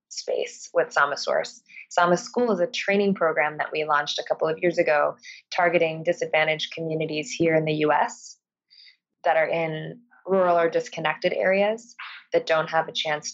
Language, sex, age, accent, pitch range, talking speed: English, female, 20-39, American, 155-185 Hz, 165 wpm